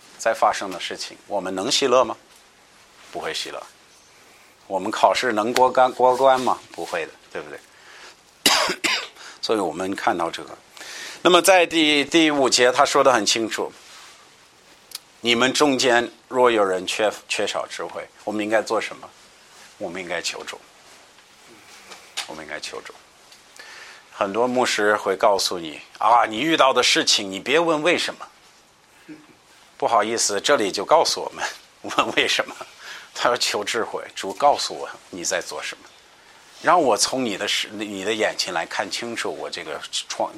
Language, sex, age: Chinese, male, 50-69